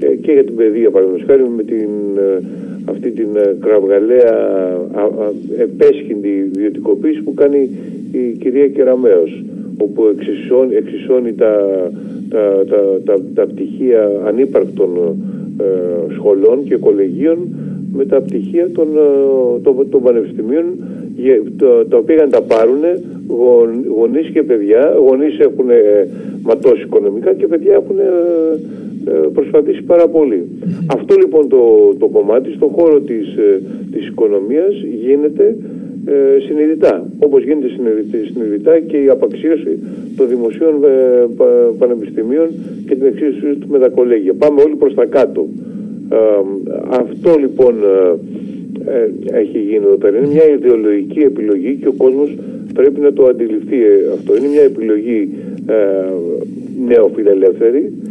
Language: Greek